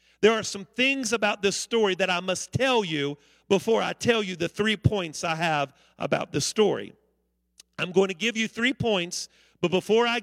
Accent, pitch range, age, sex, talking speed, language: American, 175-230 Hz, 40-59, male, 200 wpm, English